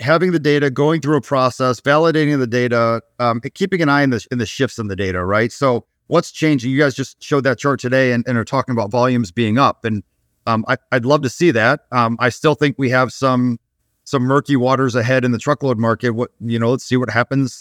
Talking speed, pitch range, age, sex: 245 wpm, 115-140 Hz, 30-49, male